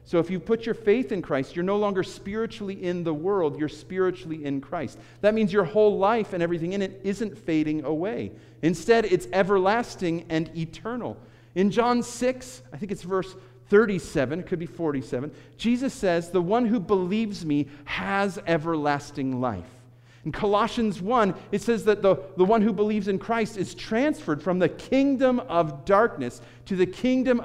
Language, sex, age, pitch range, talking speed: English, male, 40-59, 140-200 Hz, 175 wpm